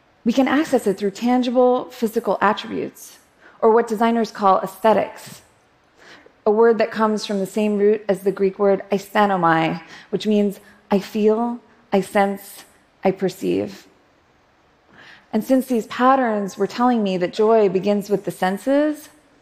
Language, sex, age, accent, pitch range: Japanese, female, 20-39, American, 195-235 Hz